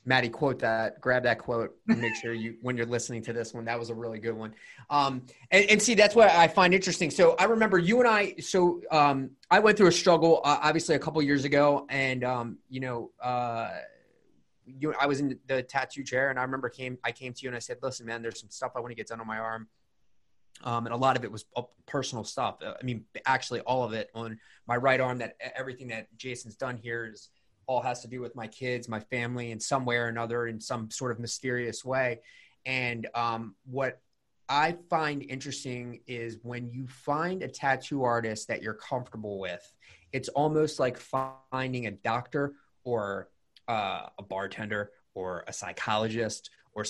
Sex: male